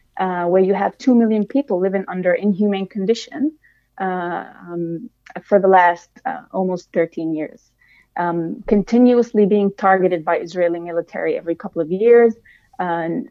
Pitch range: 185-225 Hz